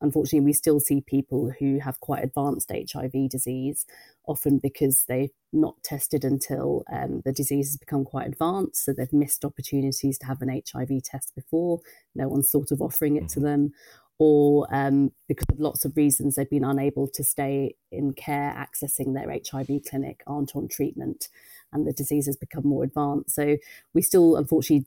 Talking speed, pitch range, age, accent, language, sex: 180 wpm, 140-150 Hz, 30-49, British, English, female